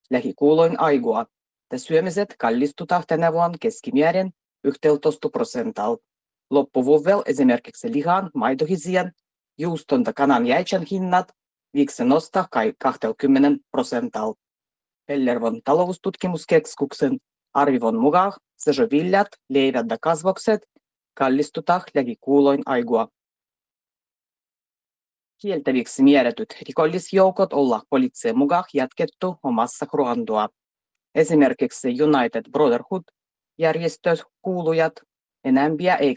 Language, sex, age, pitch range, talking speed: Finnish, female, 30-49, 135-185 Hz, 85 wpm